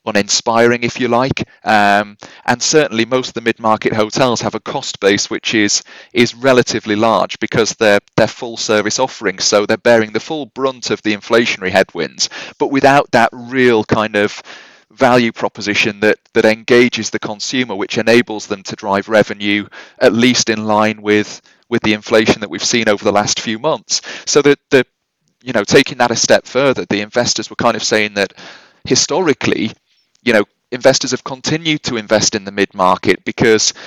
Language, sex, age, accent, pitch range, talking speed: English, male, 30-49, British, 105-125 Hz, 175 wpm